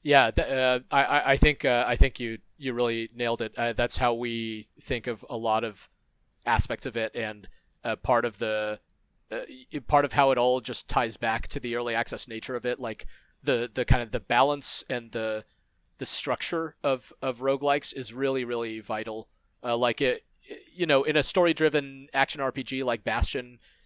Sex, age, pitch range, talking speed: male, 30-49, 115-135 Hz, 195 wpm